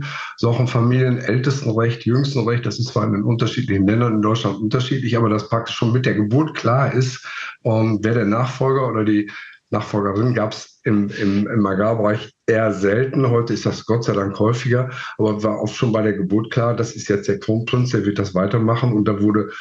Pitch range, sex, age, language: 100-125 Hz, male, 50-69, German